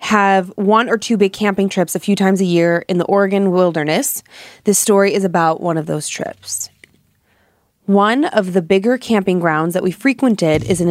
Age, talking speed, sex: 20-39, 195 wpm, female